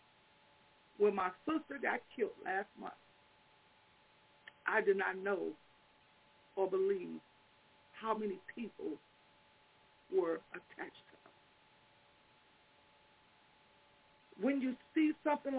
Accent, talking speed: American, 90 wpm